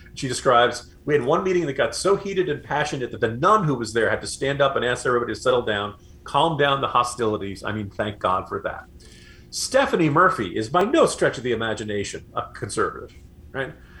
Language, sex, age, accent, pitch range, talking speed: English, male, 40-59, American, 110-160 Hz, 215 wpm